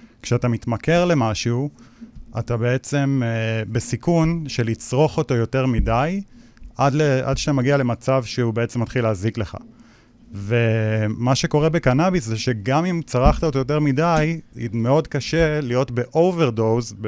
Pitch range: 110-135 Hz